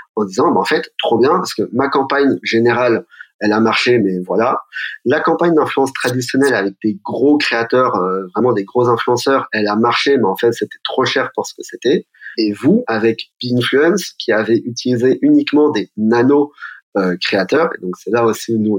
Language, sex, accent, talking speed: French, male, French, 200 wpm